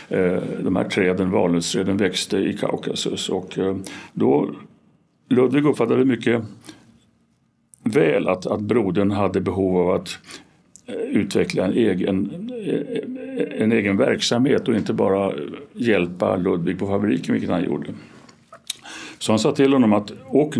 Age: 60-79